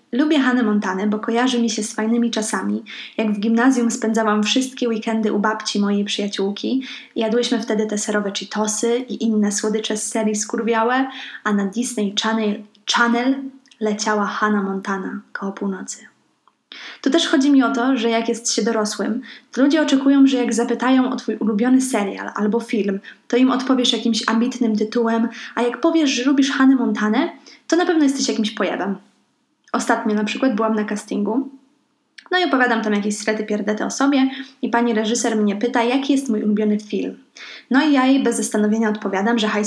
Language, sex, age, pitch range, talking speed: Polish, female, 20-39, 215-255 Hz, 175 wpm